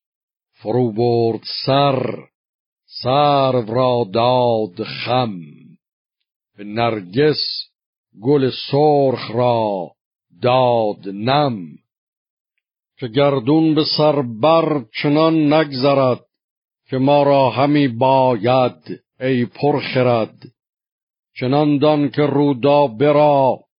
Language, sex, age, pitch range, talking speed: Persian, male, 60-79, 120-140 Hz, 80 wpm